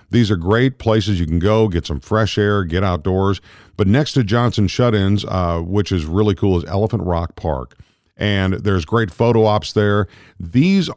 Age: 50-69